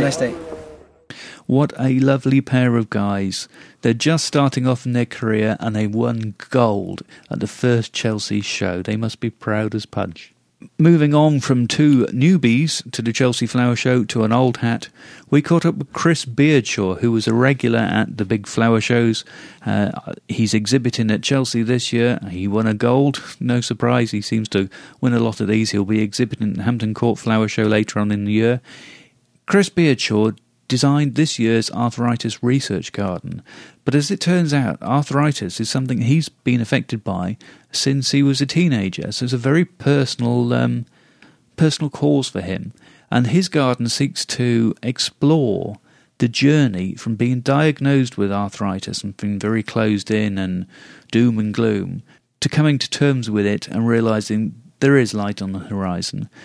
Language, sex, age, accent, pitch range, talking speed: English, male, 40-59, British, 110-135 Hz, 175 wpm